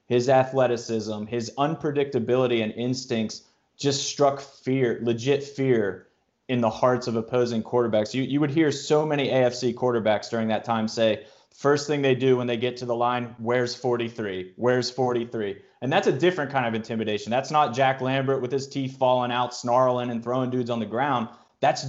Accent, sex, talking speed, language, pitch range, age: American, male, 185 wpm, English, 115-145 Hz, 30-49